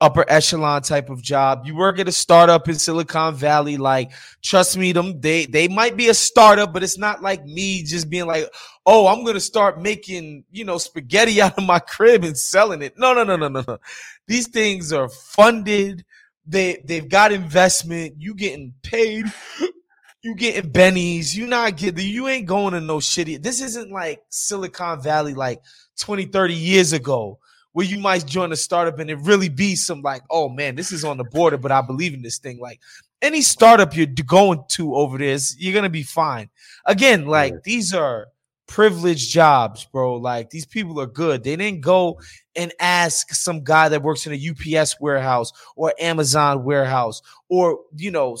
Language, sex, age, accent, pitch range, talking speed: English, male, 20-39, American, 150-200 Hz, 190 wpm